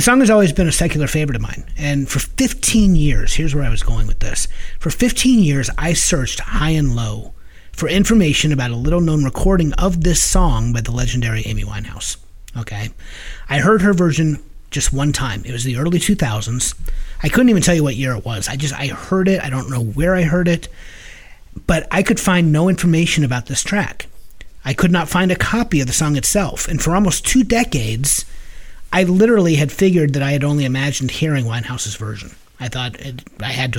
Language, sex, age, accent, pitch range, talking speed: English, male, 30-49, American, 115-165 Hz, 210 wpm